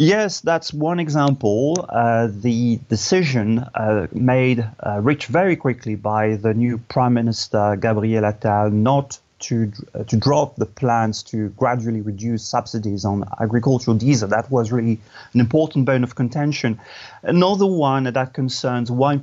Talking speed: 145 wpm